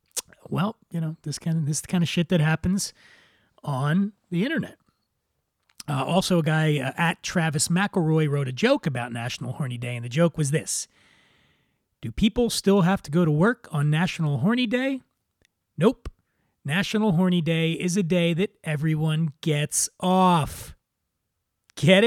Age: 30-49